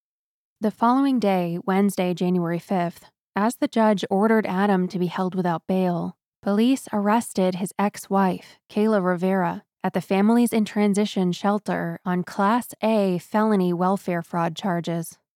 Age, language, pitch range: 20-39, English, 180-210 Hz